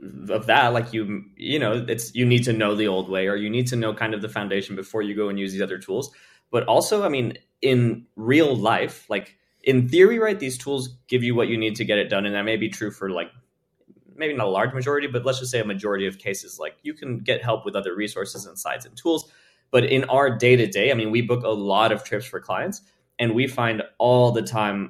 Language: English